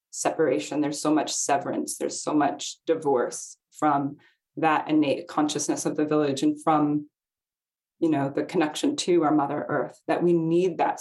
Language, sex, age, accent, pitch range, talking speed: English, female, 20-39, American, 155-180 Hz, 165 wpm